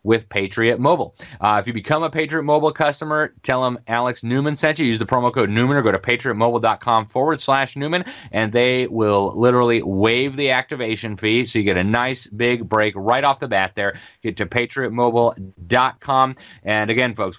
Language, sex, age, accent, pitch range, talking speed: English, male, 30-49, American, 110-140 Hz, 190 wpm